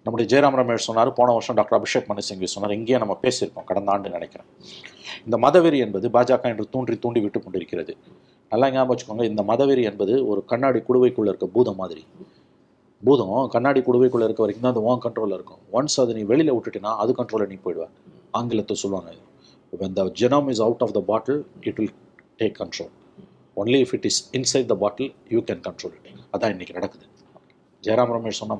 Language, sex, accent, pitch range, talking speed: Tamil, male, native, 110-135 Hz, 175 wpm